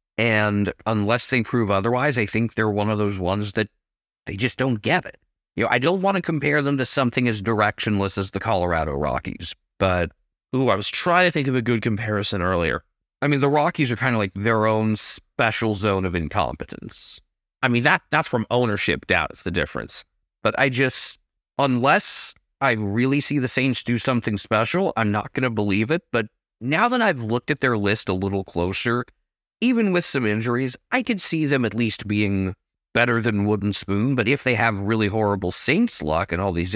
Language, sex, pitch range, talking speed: English, male, 105-140 Hz, 205 wpm